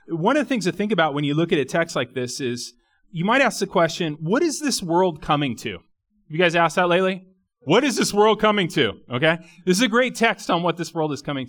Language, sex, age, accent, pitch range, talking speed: English, male, 30-49, American, 150-210 Hz, 260 wpm